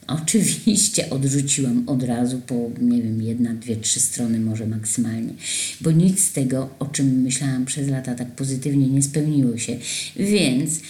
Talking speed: 155 wpm